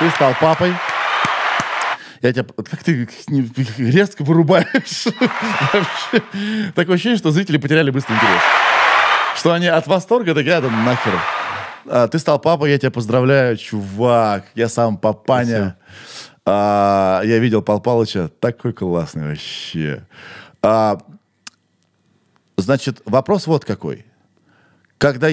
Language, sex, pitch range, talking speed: Russian, male, 105-150 Hz, 90 wpm